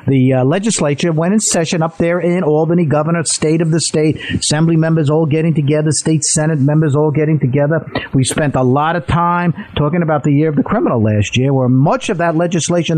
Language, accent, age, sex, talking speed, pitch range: English, American, 50-69, male, 215 wpm, 135-210 Hz